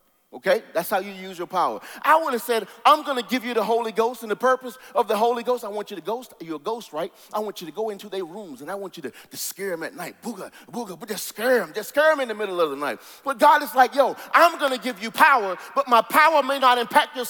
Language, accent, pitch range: English, American, 220-295 Hz